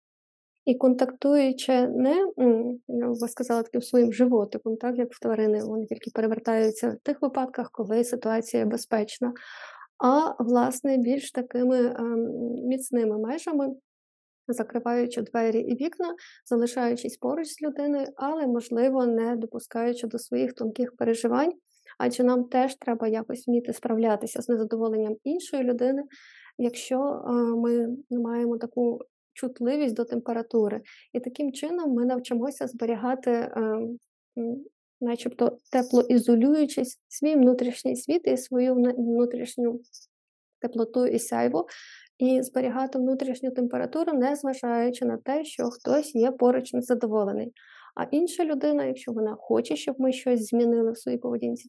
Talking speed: 120 wpm